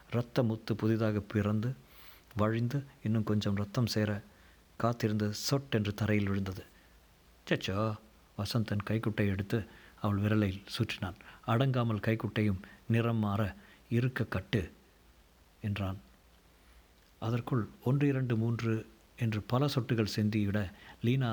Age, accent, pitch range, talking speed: 50-69, native, 100-120 Hz, 105 wpm